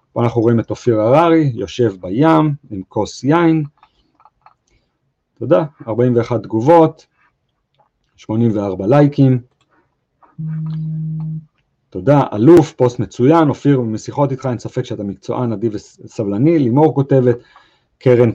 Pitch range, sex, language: 115-145 Hz, male, English